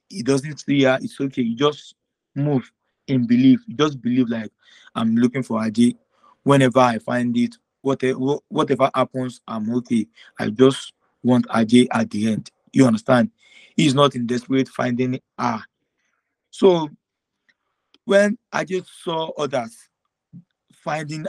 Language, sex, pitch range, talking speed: English, male, 125-155 Hz, 130 wpm